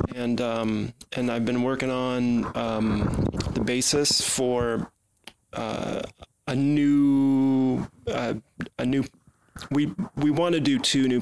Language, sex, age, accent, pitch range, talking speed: English, male, 20-39, American, 110-135 Hz, 130 wpm